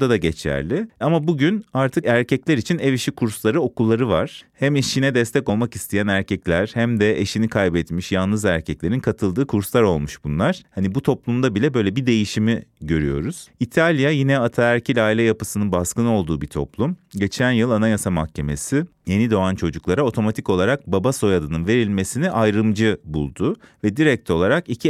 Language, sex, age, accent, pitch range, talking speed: Turkish, male, 30-49, native, 100-130 Hz, 150 wpm